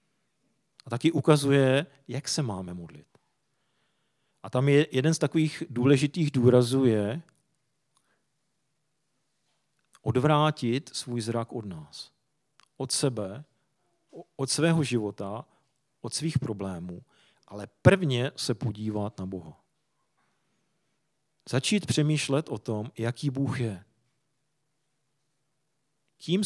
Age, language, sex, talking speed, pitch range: 40-59, Czech, male, 100 wpm, 110-150 Hz